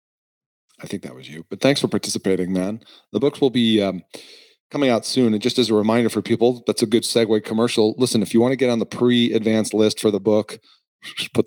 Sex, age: male, 40-59